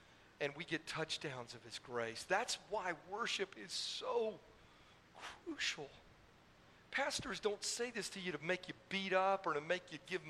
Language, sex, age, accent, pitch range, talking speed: English, male, 40-59, American, 140-190 Hz, 170 wpm